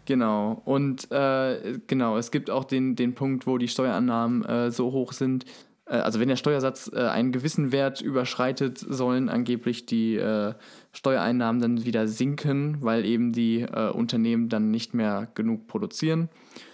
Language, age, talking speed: German, 20-39, 160 wpm